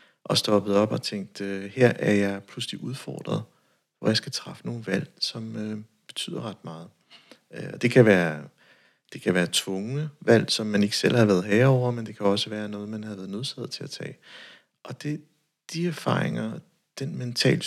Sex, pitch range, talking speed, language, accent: male, 105-135 Hz, 185 wpm, Danish, native